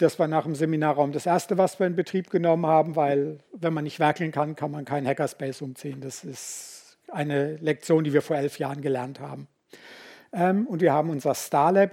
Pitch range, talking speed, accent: 145-180 Hz, 200 wpm, German